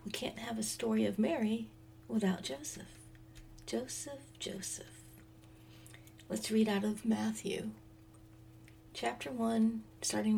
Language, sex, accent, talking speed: English, female, American, 110 wpm